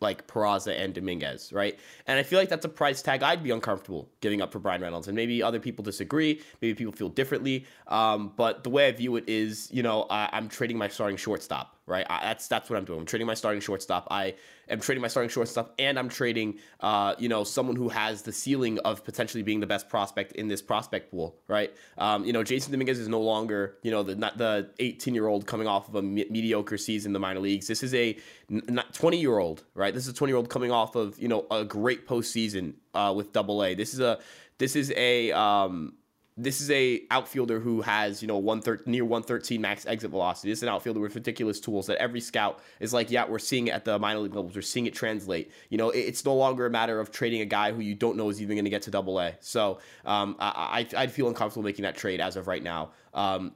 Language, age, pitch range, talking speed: English, 20-39, 105-130 Hz, 255 wpm